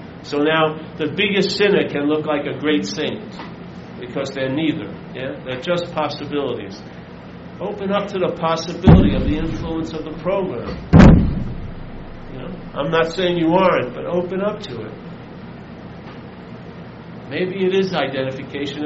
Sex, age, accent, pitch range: male, 50-69, American, 135-175 Hz